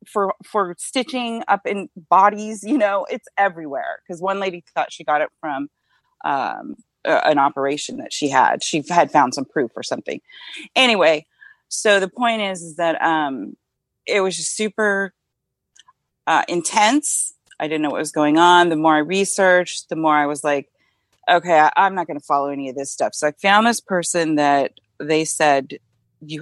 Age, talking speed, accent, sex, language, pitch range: 30-49, 185 wpm, American, female, English, 150-200 Hz